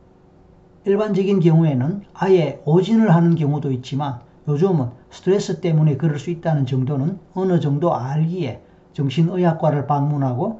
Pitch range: 145-195 Hz